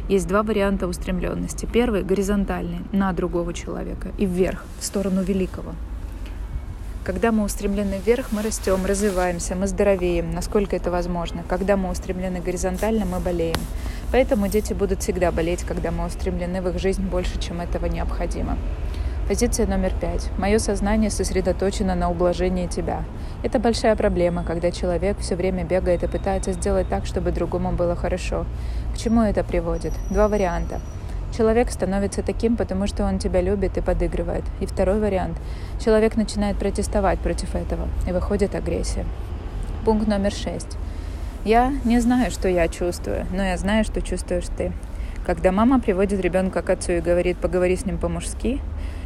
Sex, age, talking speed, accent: female, 20-39, 155 wpm, native